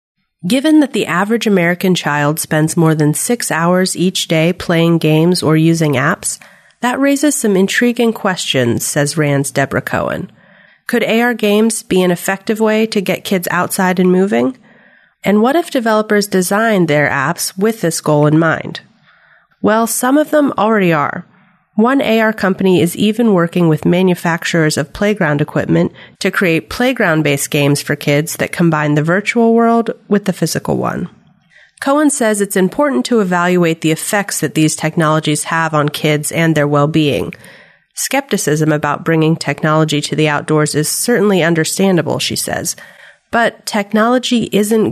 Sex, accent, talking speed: female, American, 155 wpm